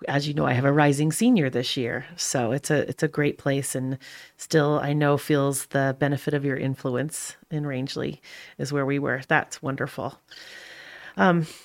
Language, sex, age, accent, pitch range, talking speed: English, female, 30-49, American, 140-165 Hz, 185 wpm